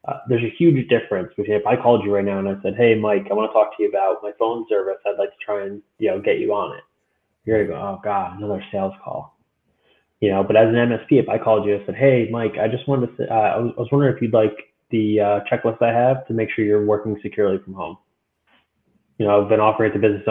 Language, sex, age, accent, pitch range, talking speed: English, male, 20-39, American, 100-115 Hz, 280 wpm